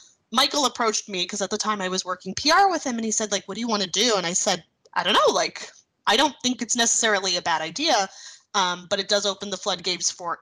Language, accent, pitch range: English, American, 185-255 Hz